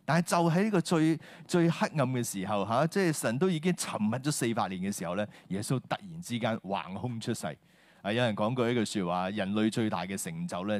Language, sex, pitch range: Chinese, male, 105-165 Hz